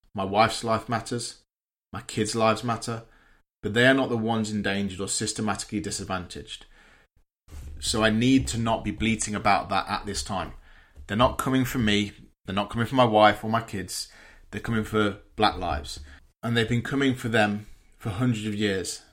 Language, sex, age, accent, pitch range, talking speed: English, male, 20-39, British, 100-120 Hz, 185 wpm